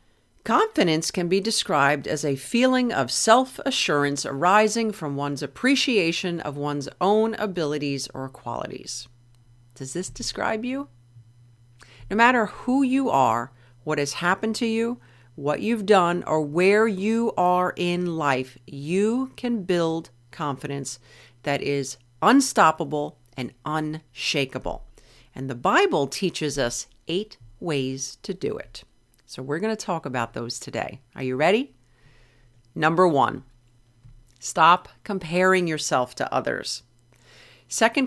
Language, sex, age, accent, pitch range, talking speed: English, female, 50-69, American, 125-205 Hz, 125 wpm